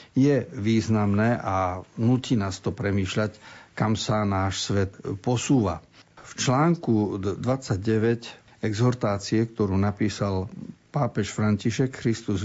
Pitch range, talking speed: 100-125 Hz, 100 wpm